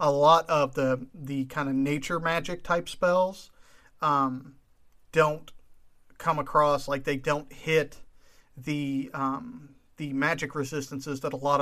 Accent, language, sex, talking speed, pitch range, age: American, English, male, 140 wpm, 140-165 Hz, 40-59